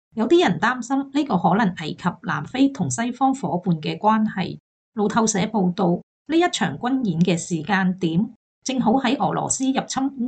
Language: Chinese